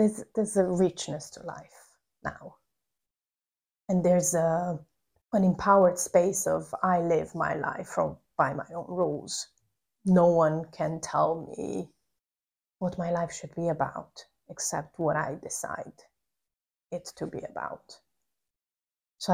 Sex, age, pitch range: female, 20-39, 155-180 Hz